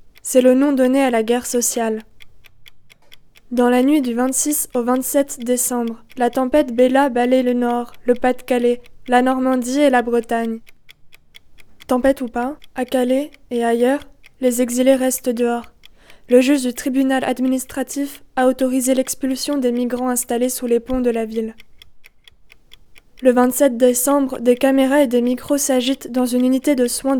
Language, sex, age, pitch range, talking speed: French, female, 20-39, 245-270 Hz, 155 wpm